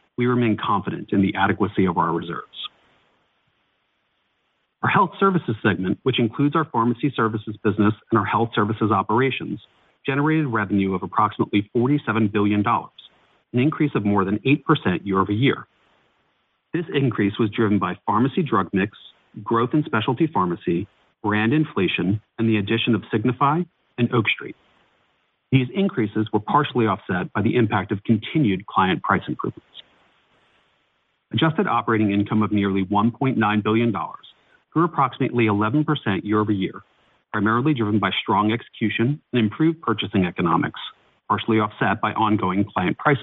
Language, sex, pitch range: English, male, 105-130 Hz